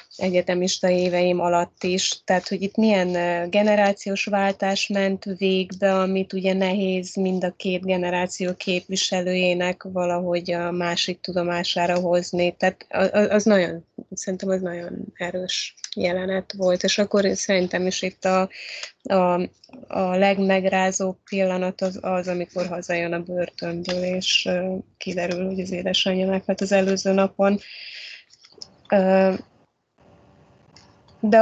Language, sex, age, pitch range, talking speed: Hungarian, female, 20-39, 180-205 Hz, 115 wpm